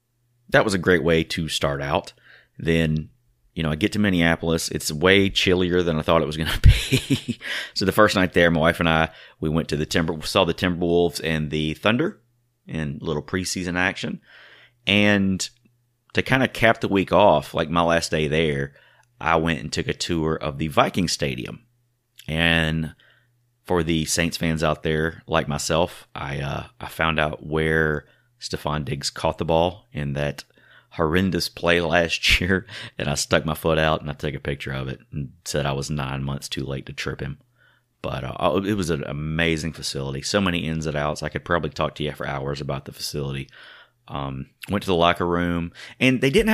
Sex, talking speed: male, 200 wpm